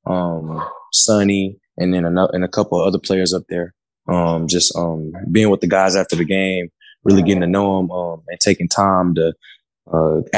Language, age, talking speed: English, 20-39, 195 wpm